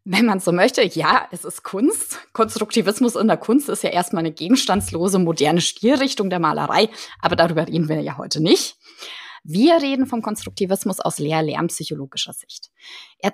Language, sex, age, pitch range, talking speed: German, female, 20-39, 195-270 Hz, 160 wpm